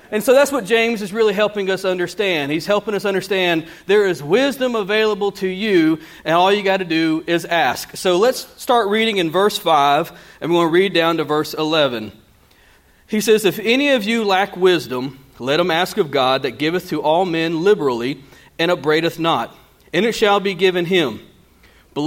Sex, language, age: male, English, 40-59